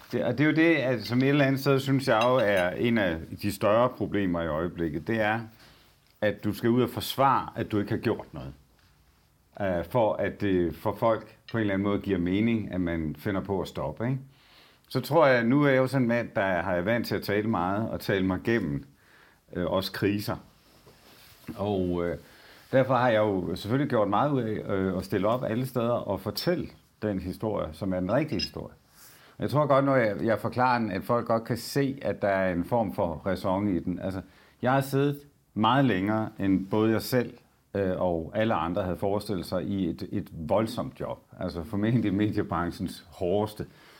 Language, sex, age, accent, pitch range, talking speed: Danish, male, 60-79, native, 95-125 Hz, 205 wpm